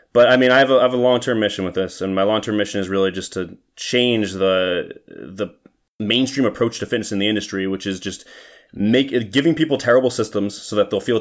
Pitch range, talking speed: 95-110 Hz, 230 wpm